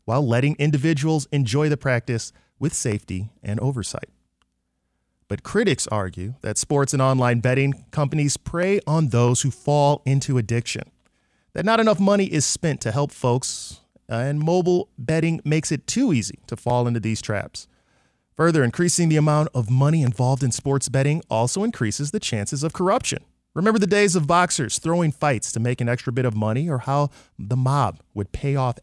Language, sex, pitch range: English, male, 115-160 Hz